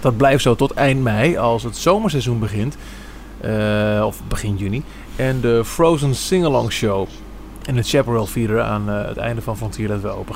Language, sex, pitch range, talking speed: Dutch, male, 110-140 Hz, 185 wpm